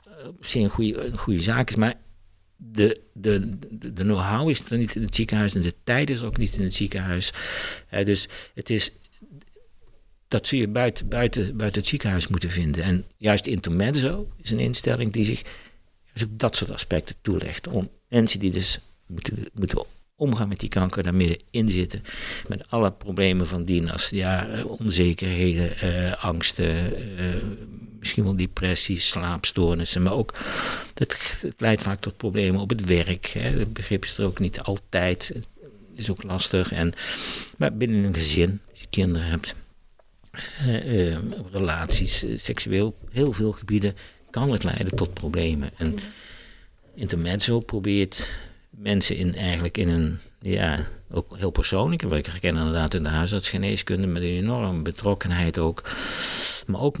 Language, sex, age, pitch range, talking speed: Dutch, male, 60-79, 90-110 Hz, 160 wpm